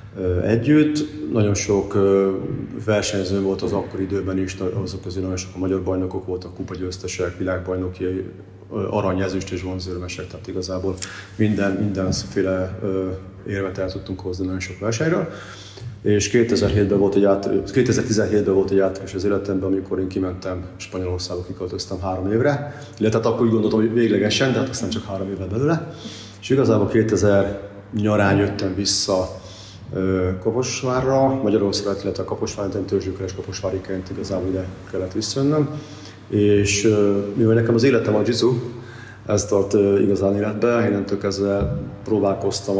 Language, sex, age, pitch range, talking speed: Hungarian, male, 30-49, 95-110 Hz, 130 wpm